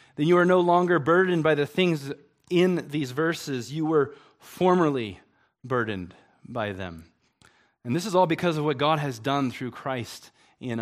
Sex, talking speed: male, 170 wpm